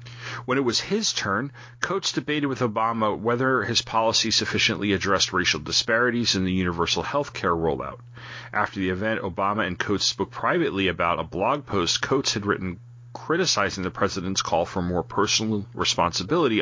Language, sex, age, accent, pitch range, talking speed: English, male, 40-59, American, 100-120 Hz, 165 wpm